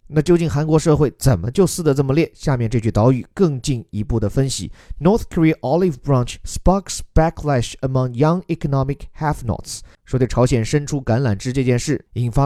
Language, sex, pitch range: Chinese, male, 110-155 Hz